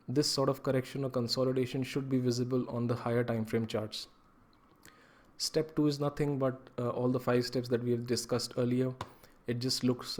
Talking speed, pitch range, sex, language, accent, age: 195 wpm, 120-130 Hz, male, Tamil, native, 20-39